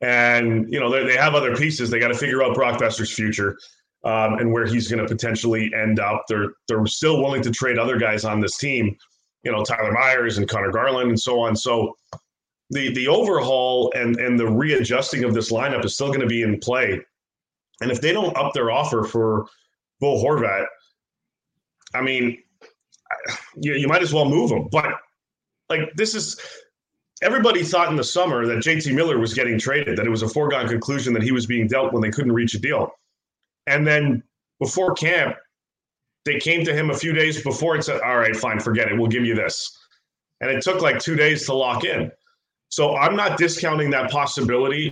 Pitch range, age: 115-145 Hz, 30-49